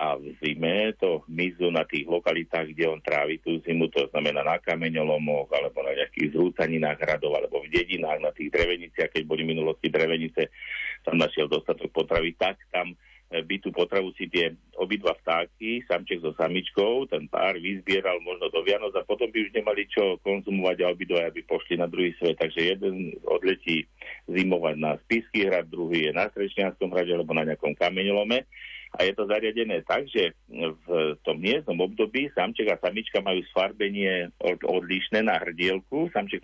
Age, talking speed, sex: 50-69, 170 wpm, male